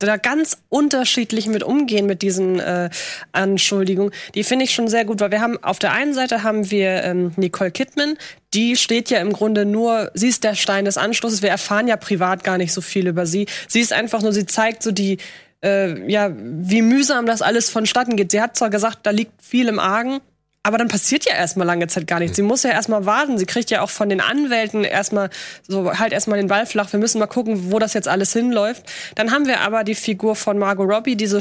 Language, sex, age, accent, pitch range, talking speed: German, female, 20-39, German, 200-230 Hz, 235 wpm